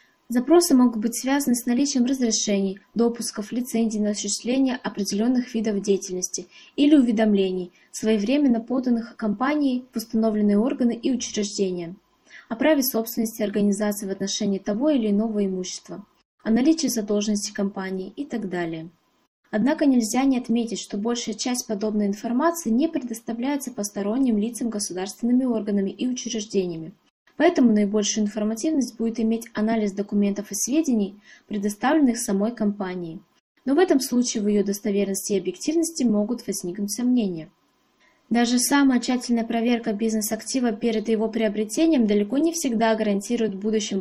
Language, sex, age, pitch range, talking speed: Russian, female, 20-39, 210-255 Hz, 130 wpm